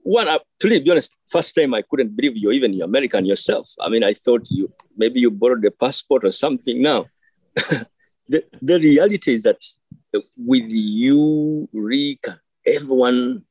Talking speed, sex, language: 155 wpm, male, English